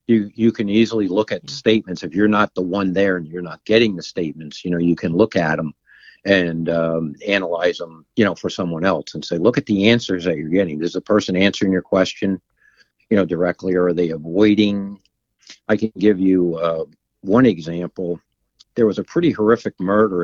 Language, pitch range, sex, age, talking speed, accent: English, 90-110 Hz, male, 50-69, 210 wpm, American